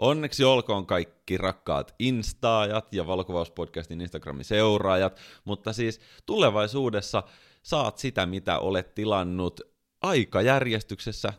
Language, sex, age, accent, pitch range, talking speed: Finnish, male, 30-49, native, 85-110 Hz, 95 wpm